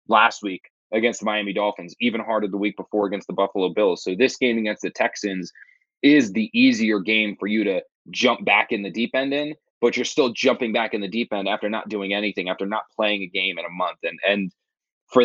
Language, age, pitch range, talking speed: English, 20-39, 100-115 Hz, 230 wpm